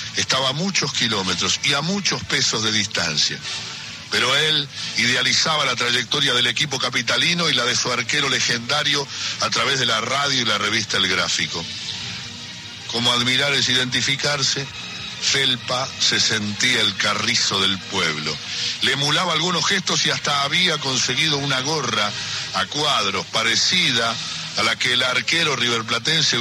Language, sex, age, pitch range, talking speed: Spanish, male, 60-79, 115-160 Hz, 145 wpm